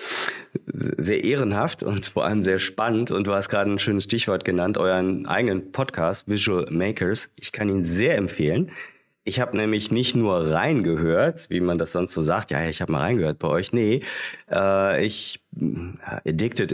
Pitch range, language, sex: 90-110 Hz, German, male